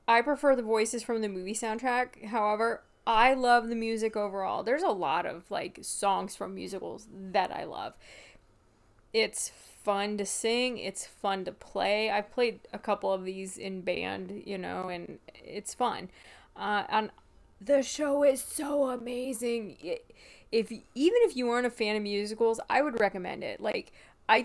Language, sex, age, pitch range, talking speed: English, female, 20-39, 210-245 Hz, 165 wpm